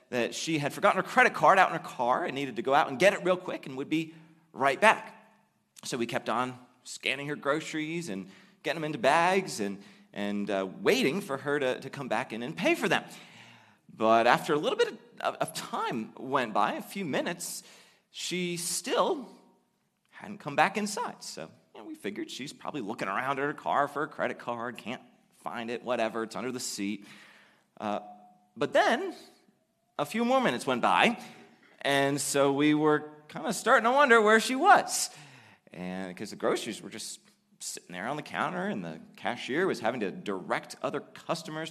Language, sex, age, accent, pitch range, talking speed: English, male, 30-49, American, 130-205 Hz, 195 wpm